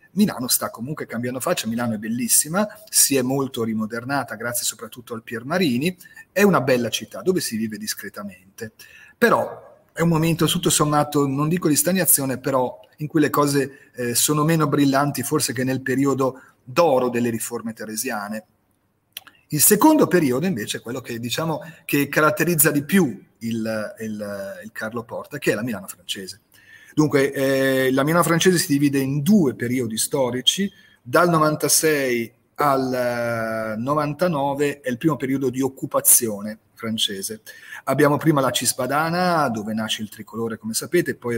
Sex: male